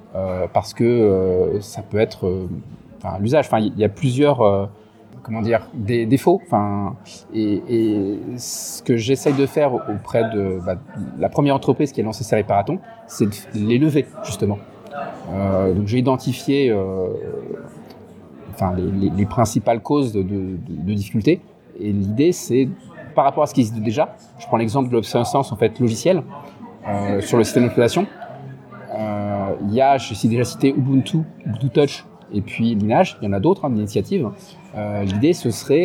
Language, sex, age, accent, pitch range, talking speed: French, male, 30-49, French, 105-145 Hz, 180 wpm